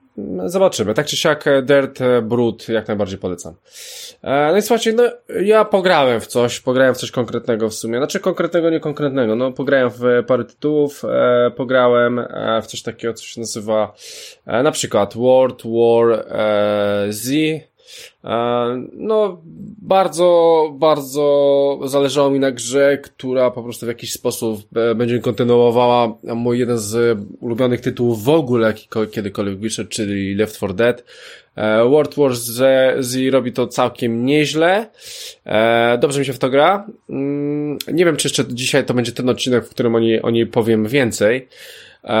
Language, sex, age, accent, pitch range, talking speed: Polish, male, 20-39, native, 110-140 Hz, 150 wpm